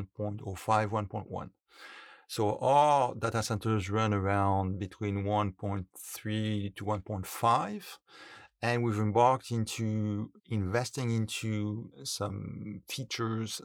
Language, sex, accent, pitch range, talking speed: English, male, French, 105-120 Hz, 90 wpm